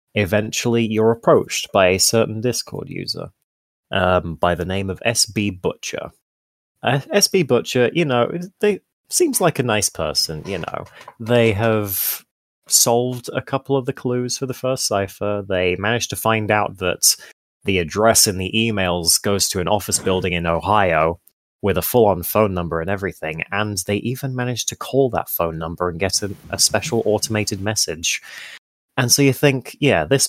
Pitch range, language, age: 90-120 Hz, English, 20-39